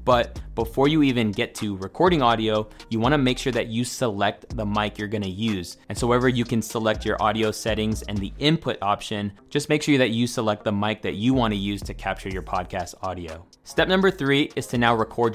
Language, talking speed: English, 235 wpm